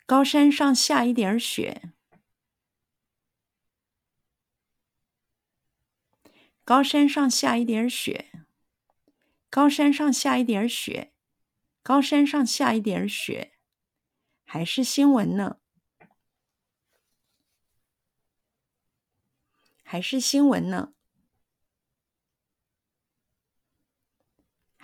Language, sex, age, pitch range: Chinese, female, 50-69, 195-280 Hz